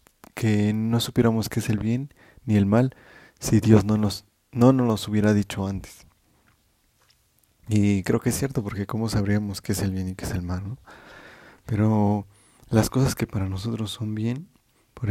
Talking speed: 185 wpm